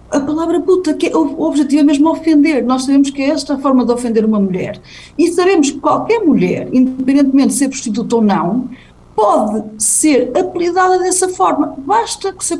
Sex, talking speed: female, 195 wpm